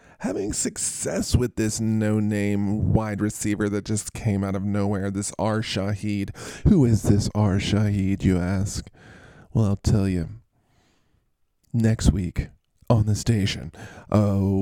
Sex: male